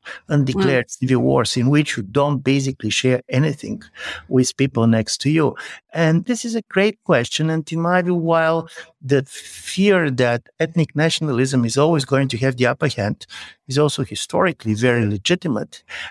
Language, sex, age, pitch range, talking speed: English, male, 60-79, 115-150 Hz, 165 wpm